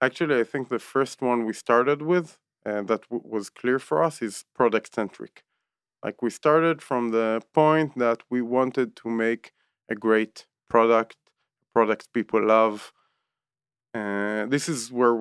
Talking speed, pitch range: 160 wpm, 110-135 Hz